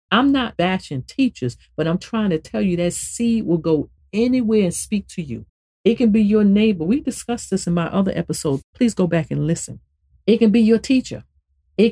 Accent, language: American, English